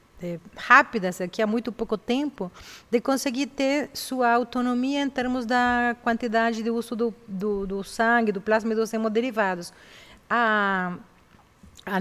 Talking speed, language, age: 140 wpm, Portuguese, 40-59